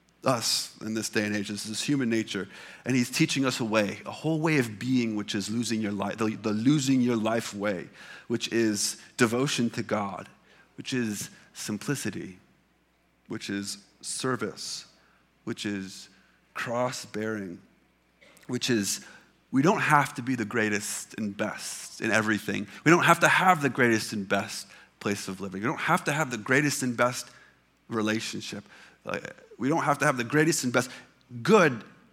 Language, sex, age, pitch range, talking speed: English, male, 30-49, 105-130 Hz, 170 wpm